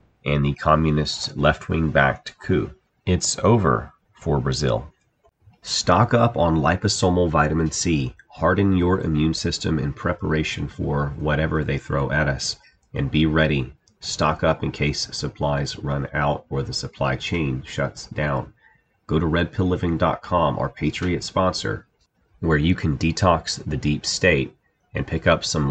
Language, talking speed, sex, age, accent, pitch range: English, 140 wpm, male, 30-49, American, 75-85 Hz